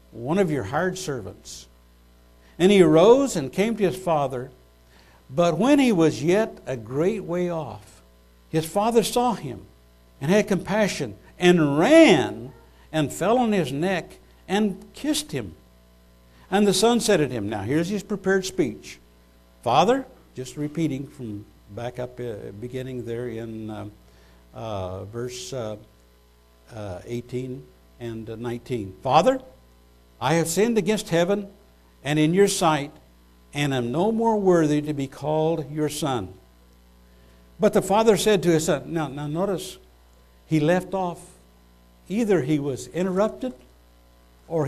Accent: American